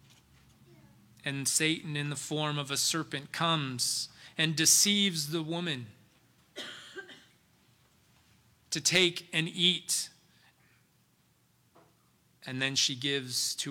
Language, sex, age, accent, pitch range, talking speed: English, male, 30-49, American, 130-160 Hz, 95 wpm